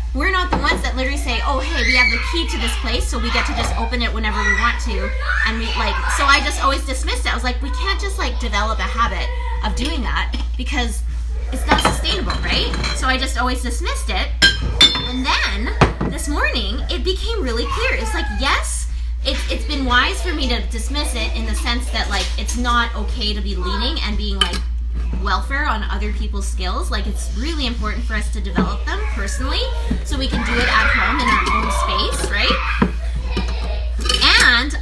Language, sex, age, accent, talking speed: English, female, 20-39, American, 210 wpm